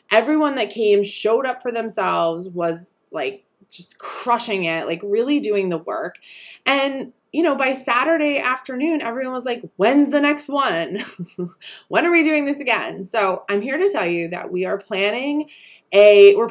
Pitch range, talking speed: 175-230 Hz, 175 wpm